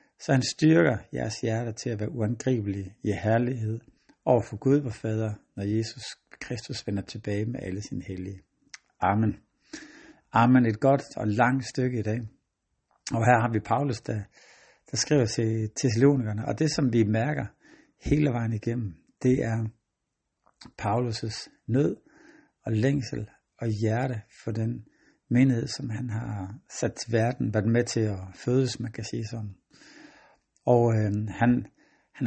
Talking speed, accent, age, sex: 150 wpm, native, 60-79, male